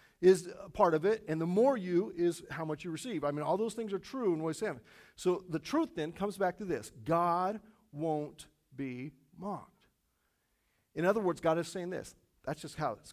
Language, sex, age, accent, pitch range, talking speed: English, male, 40-59, American, 155-215 Hz, 215 wpm